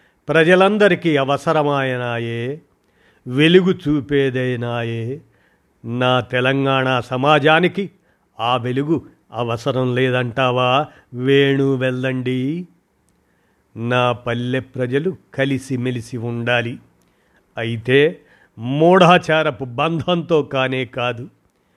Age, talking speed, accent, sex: 50-69, 65 wpm, native, male